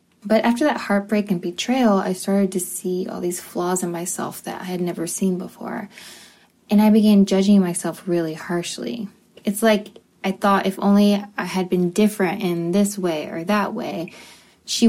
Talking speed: 180 wpm